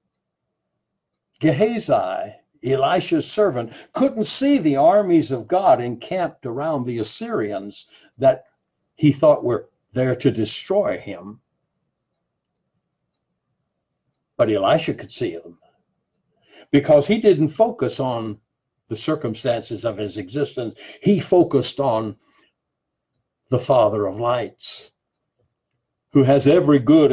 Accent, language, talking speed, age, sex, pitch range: American, English, 105 wpm, 60-79, male, 125-190 Hz